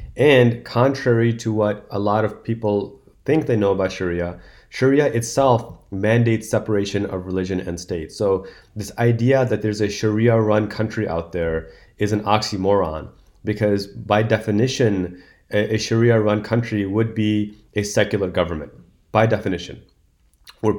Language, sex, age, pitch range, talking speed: English, male, 30-49, 100-115 Hz, 140 wpm